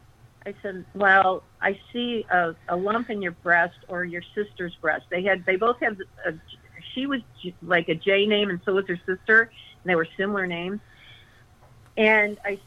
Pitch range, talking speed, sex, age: 165-220 Hz, 180 wpm, female, 50-69